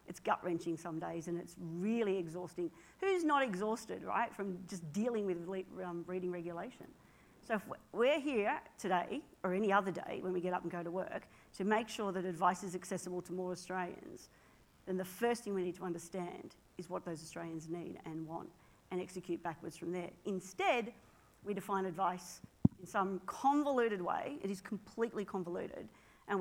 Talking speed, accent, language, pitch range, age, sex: 180 wpm, Australian, English, 180-200 Hz, 50-69, female